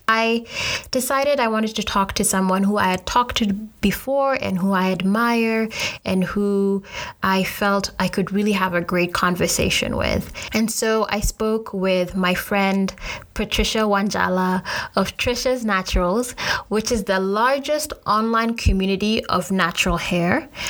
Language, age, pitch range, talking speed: English, 20-39, 185-225 Hz, 150 wpm